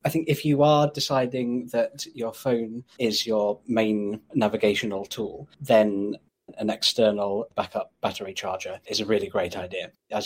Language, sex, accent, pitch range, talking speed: English, male, British, 105-130 Hz, 150 wpm